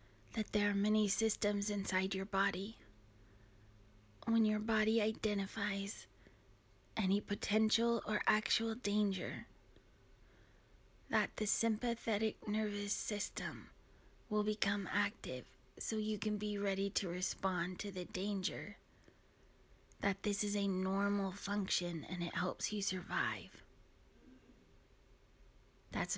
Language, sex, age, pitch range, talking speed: English, female, 20-39, 185-210 Hz, 110 wpm